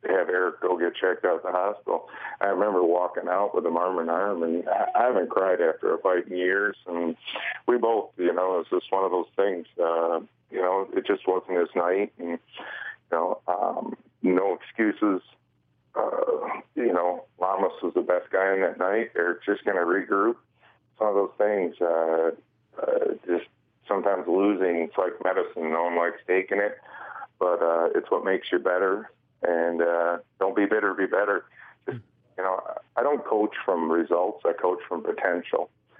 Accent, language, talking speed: American, English, 185 wpm